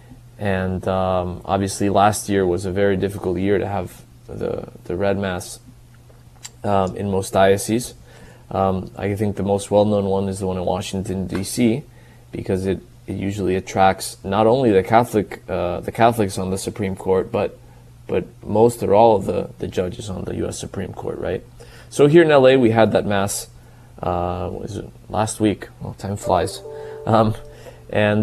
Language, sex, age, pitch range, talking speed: English, male, 20-39, 95-115 Hz, 175 wpm